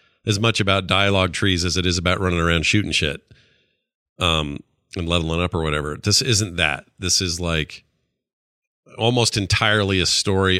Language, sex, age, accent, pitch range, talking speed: English, male, 40-59, American, 85-110 Hz, 165 wpm